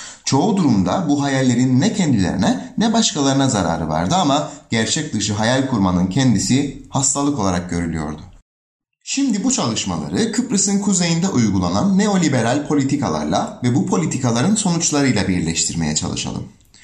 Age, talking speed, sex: 30-49, 120 wpm, male